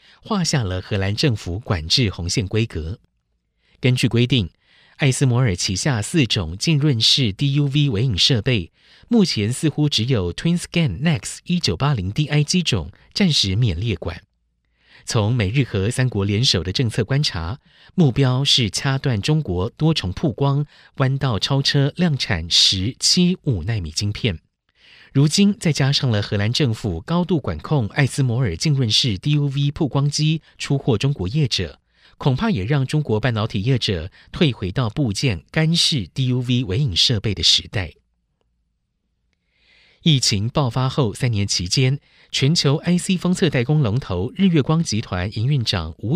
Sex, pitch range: male, 105-145 Hz